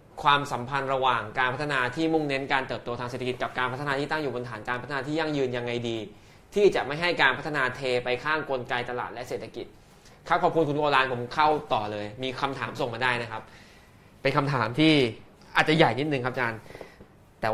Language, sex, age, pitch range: Thai, male, 20-39, 120-150 Hz